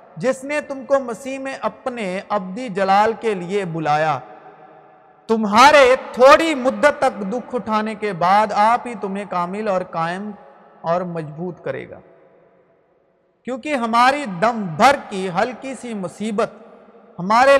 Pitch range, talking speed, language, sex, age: 195-255 Hz, 135 wpm, Urdu, male, 50-69